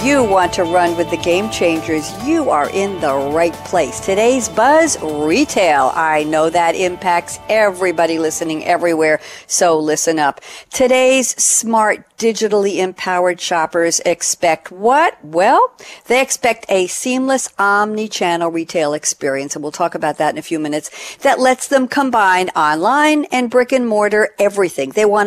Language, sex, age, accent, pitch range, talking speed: English, female, 60-79, American, 170-230 Hz, 150 wpm